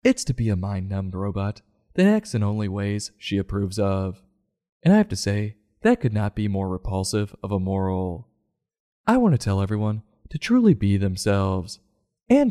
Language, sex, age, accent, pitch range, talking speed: English, male, 20-39, American, 95-125 Hz, 180 wpm